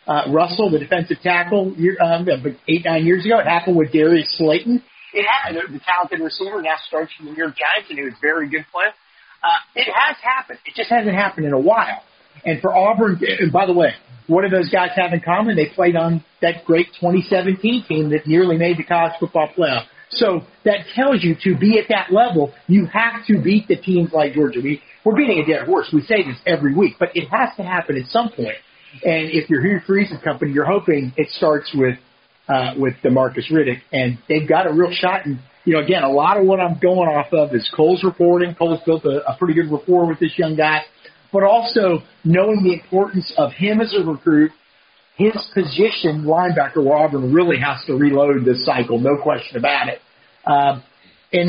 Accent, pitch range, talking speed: American, 155-190 Hz, 215 wpm